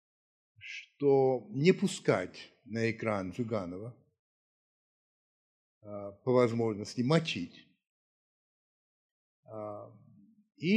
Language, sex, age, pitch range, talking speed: Russian, male, 60-79, 110-140 Hz, 55 wpm